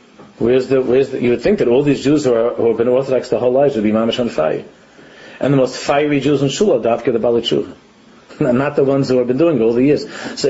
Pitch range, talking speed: 125-150 Hz, 270 wpm